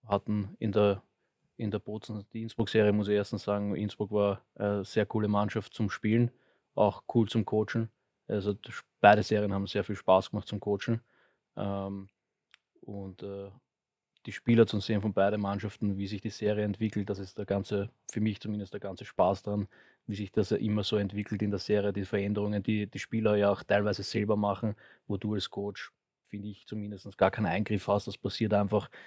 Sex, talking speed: male, 195 wpm